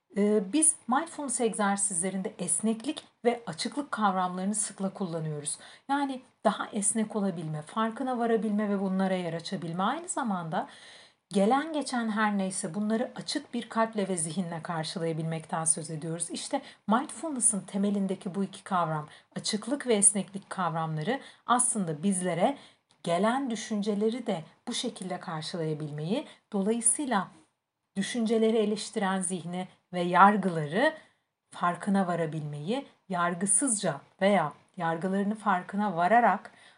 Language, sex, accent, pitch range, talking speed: Turkish, female, native, 180-235 Hz, 105 wpm